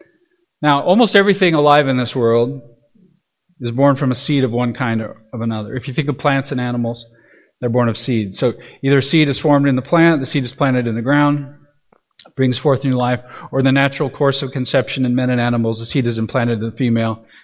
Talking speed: 225 wpm